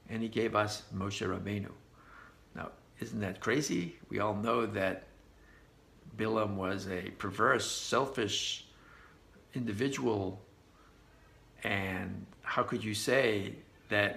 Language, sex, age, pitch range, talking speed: English, male, 60-79, 105-150 Hz, 110 wpm